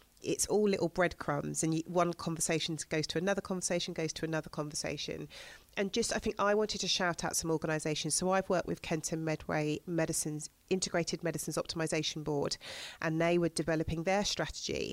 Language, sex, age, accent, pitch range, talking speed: English, female, 40-59, British, 160-200 Hz, 175 wpm